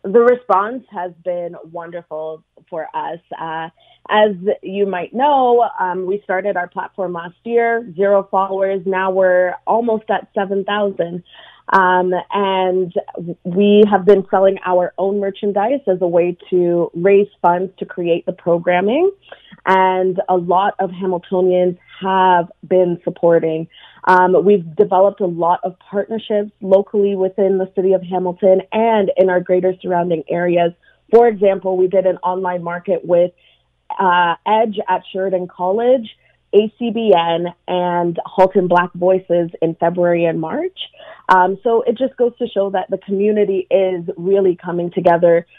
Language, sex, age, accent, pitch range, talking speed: English, female, 20-39, American, 175-200 Hz, 140 wpm